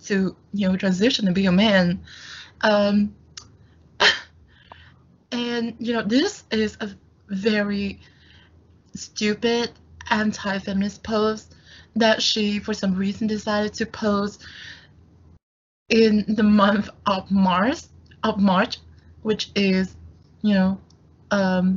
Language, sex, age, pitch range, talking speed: Vietnamese, female, 20-39, 190-215 Hz, 110 wpm